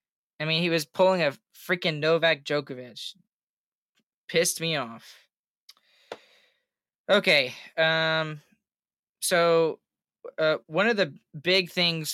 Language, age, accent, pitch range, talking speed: English, 10-29, American, 145-170 Hz, 105 wpm